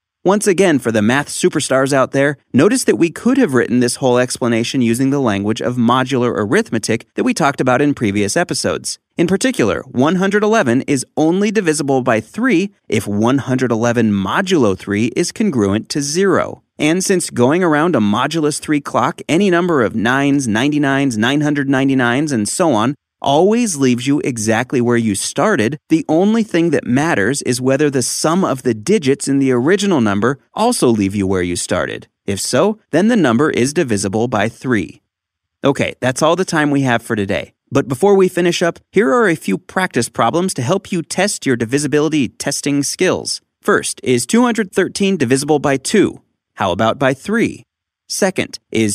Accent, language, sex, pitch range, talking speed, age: American, English, male, 120-170 Hz, 175 wpm, 30-49